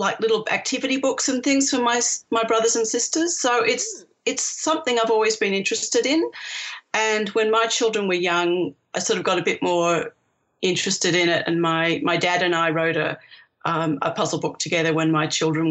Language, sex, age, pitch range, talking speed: English, female, 40-59, 165-225 Hz, 205 wpm